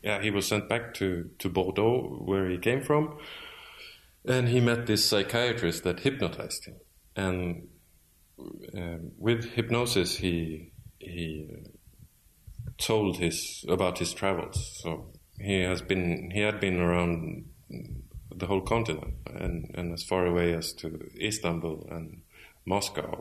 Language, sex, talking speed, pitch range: English, male, 135 wpm, 85-100 Hz